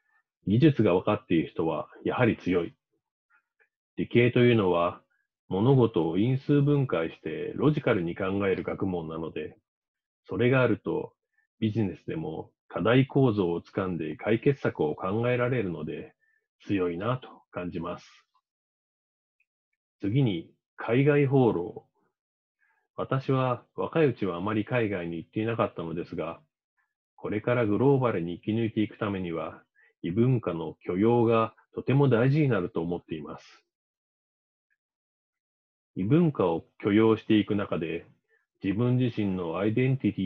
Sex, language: male, Japanese